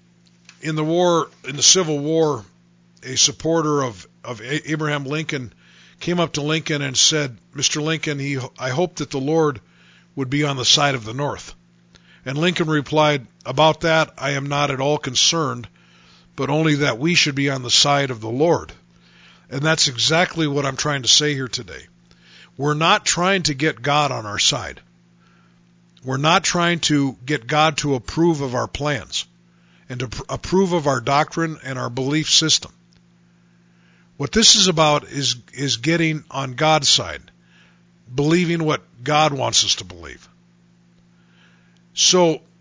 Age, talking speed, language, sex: 50-69, 165 wpm, English, male